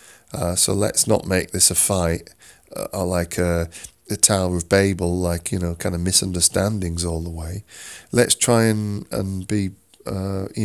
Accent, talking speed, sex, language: British, 175 wpm, male, English